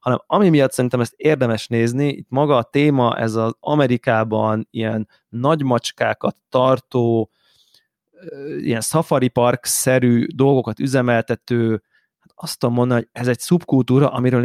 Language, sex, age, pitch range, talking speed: Hungarian, male, 30-49, 120-140 Hz, 130 wpm